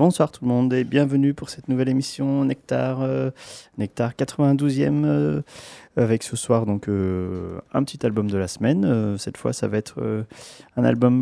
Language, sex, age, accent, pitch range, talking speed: French, male, 30-49, French, 100-125 Hz, 195 wpm